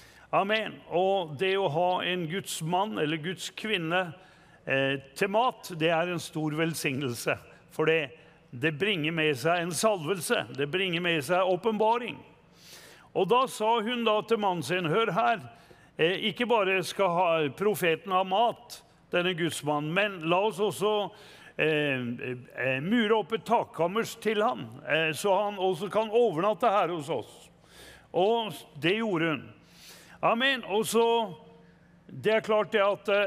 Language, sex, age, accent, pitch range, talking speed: English, male, 60-79, Swedish, 160-215 Hz, 150 wpm